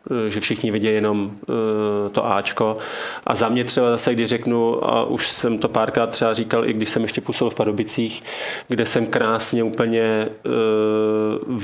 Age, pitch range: 30-49, 105-115 Hz